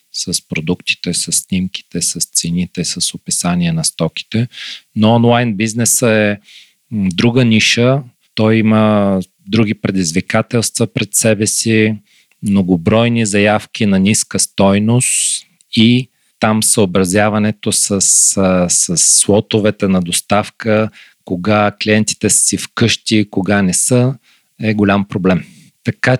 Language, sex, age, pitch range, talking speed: Bulgarian, male, 40-59, 90-110 Hz, 110 wpm